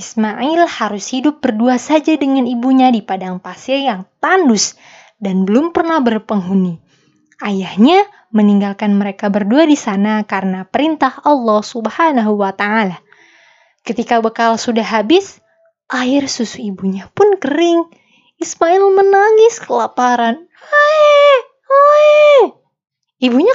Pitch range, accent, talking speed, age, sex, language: 215-315 Hz, native, 105 wpm, 20-39, female, Indonesian